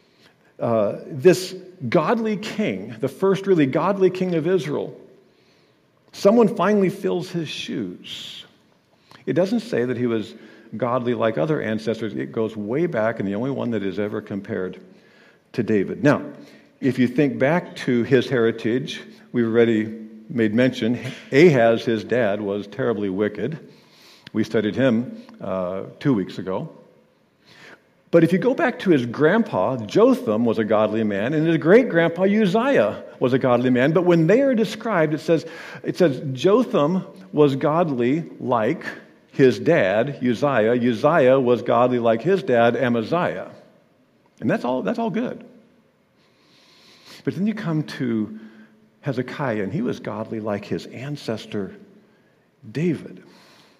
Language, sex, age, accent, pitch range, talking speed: English, male, 50-69, American, 115-185 Hz, 140 wpm